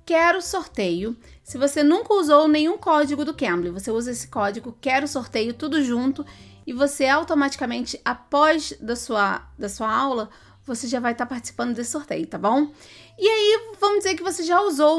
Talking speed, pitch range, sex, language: 170 wpm, 245-310 Hz, female, Portuguese